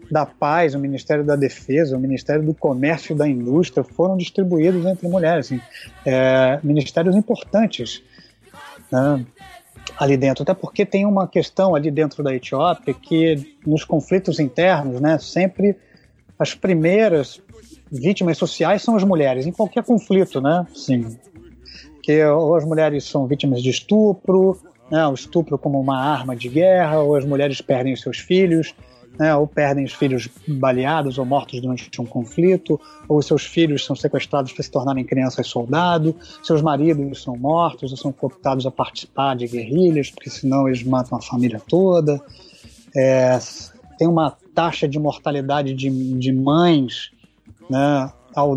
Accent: Brazilian